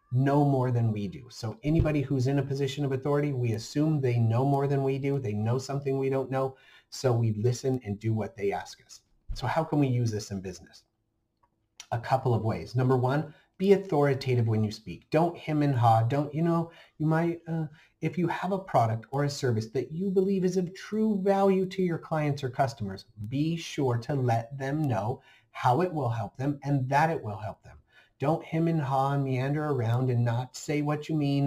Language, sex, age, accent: English, male, 30-49, American